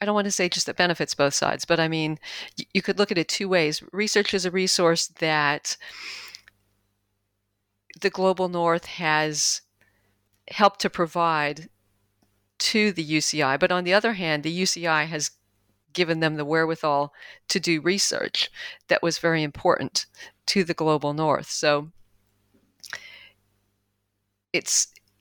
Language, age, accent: English, 40-59, American